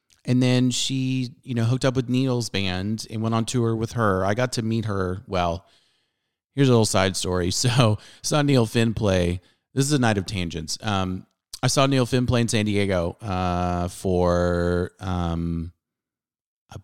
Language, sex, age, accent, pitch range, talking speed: English, male, 30-49, American, 95-120 Hz, 180 wpm